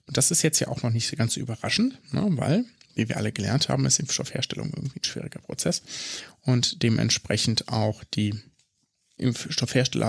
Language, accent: German, German